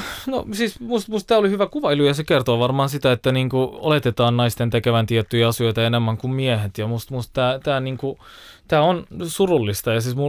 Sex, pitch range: male, 115-160 Hz